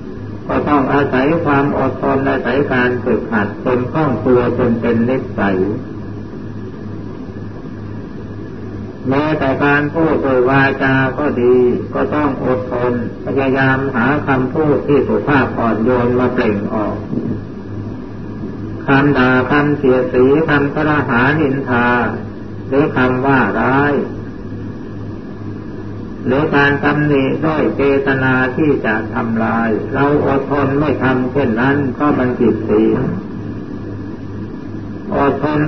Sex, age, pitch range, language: male, 60-79, 115-140 Hz, Thai